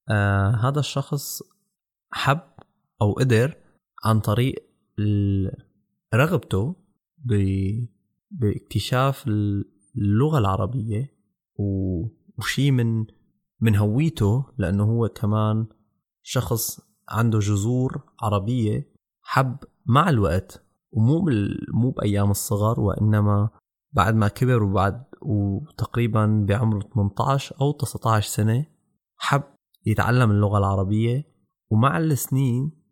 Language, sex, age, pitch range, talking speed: German, male, 20-39, 105-130 Hz, 85 wpm